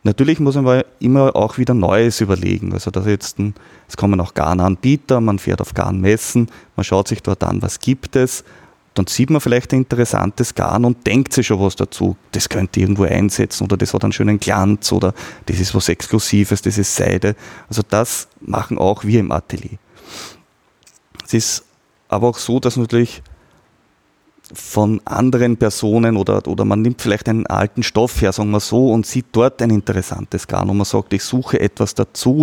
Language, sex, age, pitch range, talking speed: German, male, 30-49, 95-120 Hz, 180 wpm